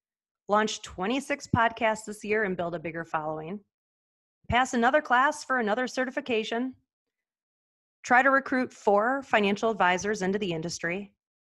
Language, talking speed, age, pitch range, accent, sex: English, 130 wpm, 30-49, 175-255 Hz, American, female